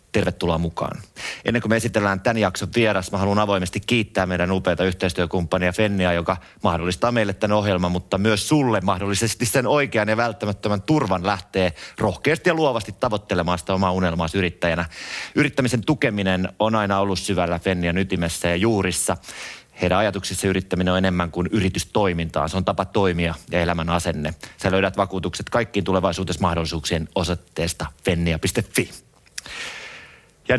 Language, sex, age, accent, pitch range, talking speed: Finnish, male, 30-49, native, 90-110 Hz, 145 wpm